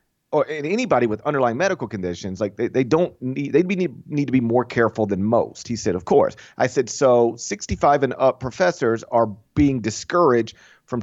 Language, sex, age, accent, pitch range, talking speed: English, male, 40-59, American, 100-125 Hz, 200 wpm